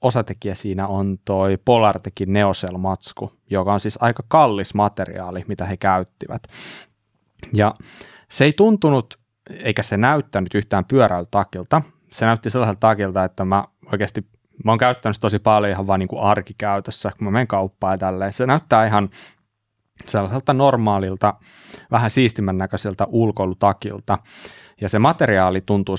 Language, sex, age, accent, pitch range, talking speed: Finnish, male, 20-39, native, 95-120 Hz, 135 wpm